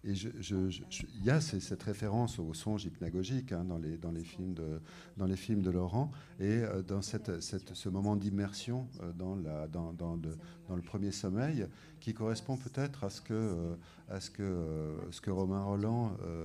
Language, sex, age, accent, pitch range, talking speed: French, male, 50-69, French, 85-105 Hz, 165 wpm